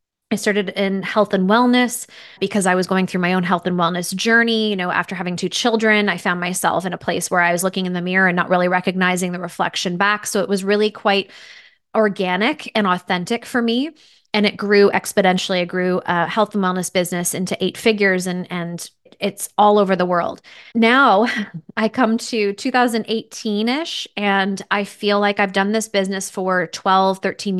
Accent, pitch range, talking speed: American, 185-220 Hz, 195 wpm